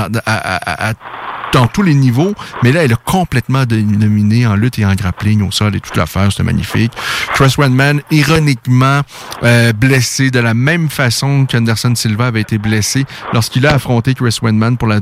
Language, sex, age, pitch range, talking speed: French, male, 30-49, 110-140 Hz, 190 wpm